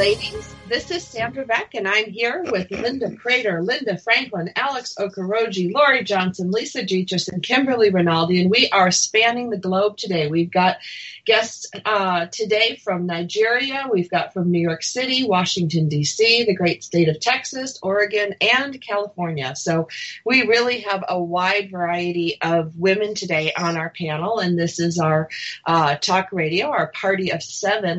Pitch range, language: 170-215 Hz, English